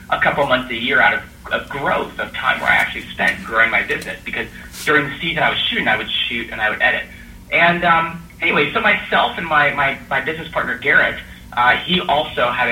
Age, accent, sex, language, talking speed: 30-49, American, male, English, 220 wpm